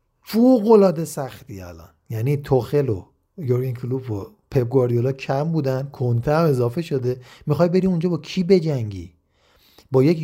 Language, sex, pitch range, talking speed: Persian, male, 120-155 Hz, 145 wpm